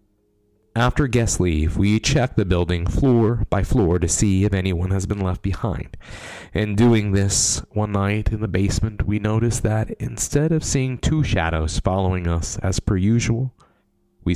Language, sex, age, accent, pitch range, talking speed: English, male, 30-49, American, 90-110 Hz, 165 wpm